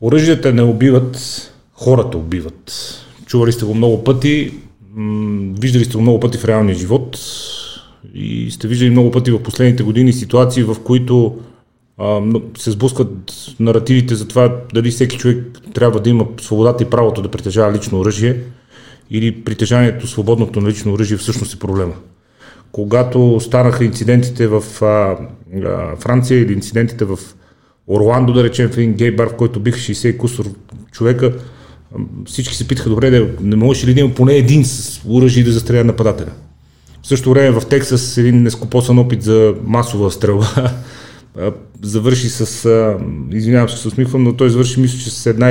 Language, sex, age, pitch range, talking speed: Bulgarian, male, 30-49, 110-125 Hz, 150 wpm